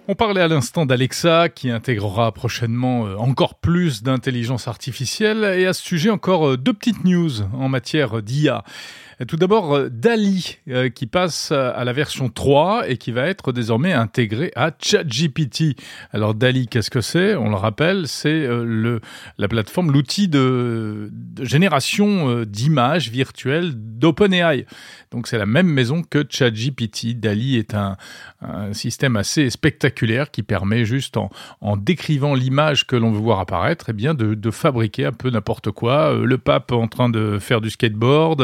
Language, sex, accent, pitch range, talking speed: French, male, French, 115-155 Hz, 160 wpm